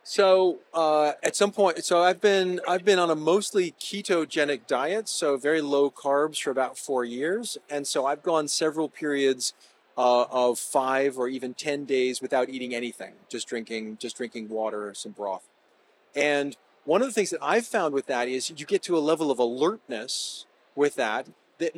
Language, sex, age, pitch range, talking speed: Dutch, male, 40-59, 140-190 Hz, 185 wpm